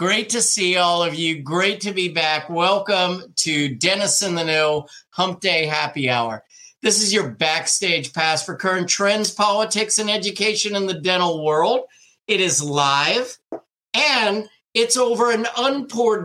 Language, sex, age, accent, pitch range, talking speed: English, male, 50-69, American, 145-195 Hz, 160 wpm